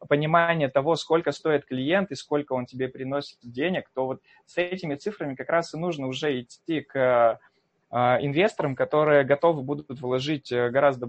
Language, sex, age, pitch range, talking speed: Russian, male, 20-39, 130-165 Hz, 155 wpm